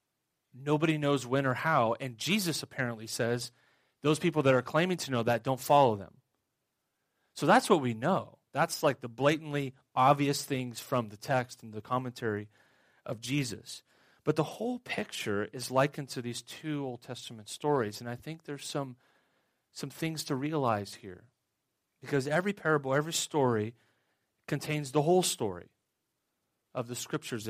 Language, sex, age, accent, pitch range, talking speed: English, male, 30-49, American, 120-150 Hz, 160 wpm